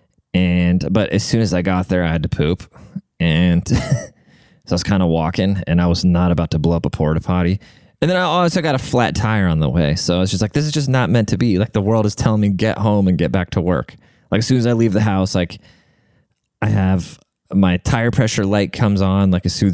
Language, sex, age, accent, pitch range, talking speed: English, male, 20-39, American, 85-105 Hz, 260 wpm